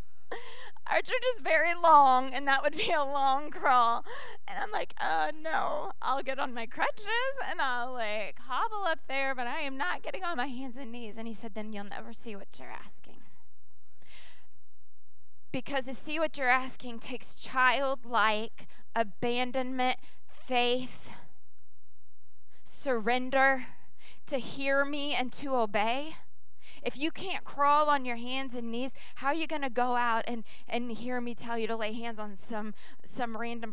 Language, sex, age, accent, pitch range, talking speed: English, female, 20-39, American, 200-270 Hz, 165 wpm